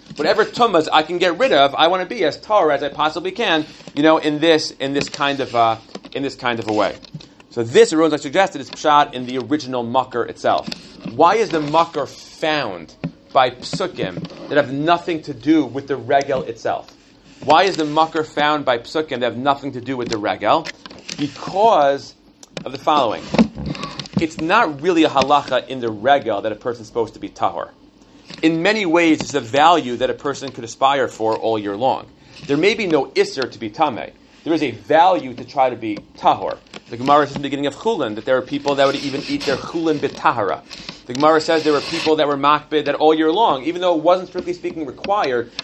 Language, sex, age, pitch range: English, male, 30-49, 135-165 Hz